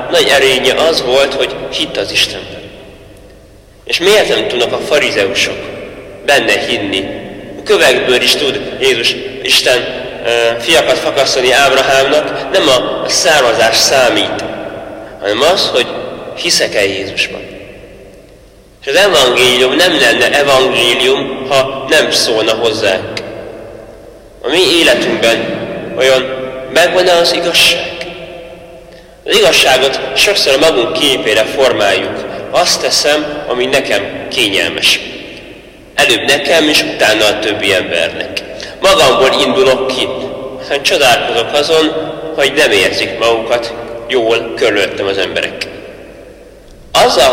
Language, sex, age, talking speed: Hungarian, male, 30-49, 110 wpm